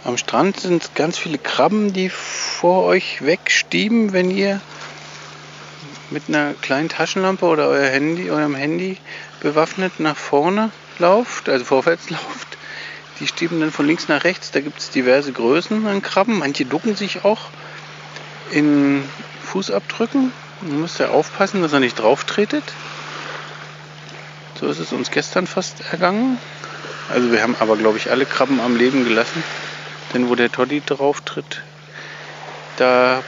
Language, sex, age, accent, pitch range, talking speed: German, male, 40-59, German, 125-170 Hz, 150 wpm